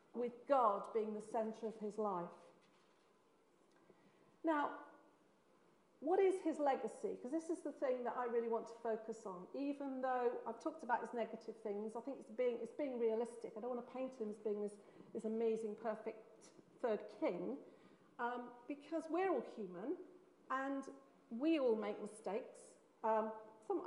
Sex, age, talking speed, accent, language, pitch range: female, 40-59, 165 wpm, British, English, 220-300 Hz